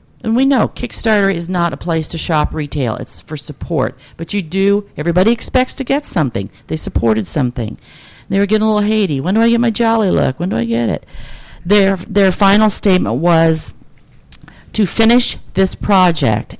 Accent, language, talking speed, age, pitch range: American, English, 190 wpm, 50-69, 150-195 Hz